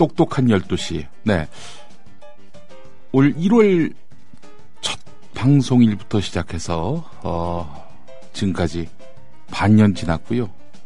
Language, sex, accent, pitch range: Korean, male, native, 85-125 Hz